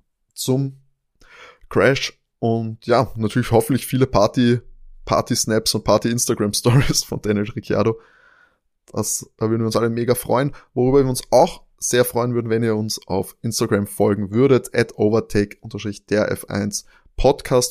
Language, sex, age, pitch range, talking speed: German, male, 20-39, 105-130 Hz, 135 wpm